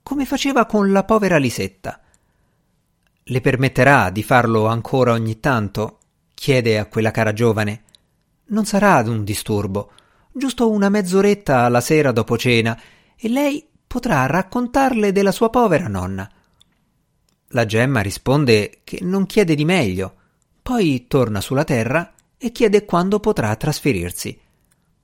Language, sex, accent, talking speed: Italian, male, native, 130 wpm